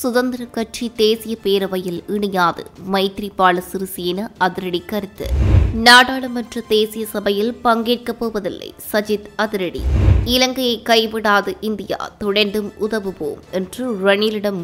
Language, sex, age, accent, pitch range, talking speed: English, female, 20-39, Indian, 195-220 Hz, 90 wpm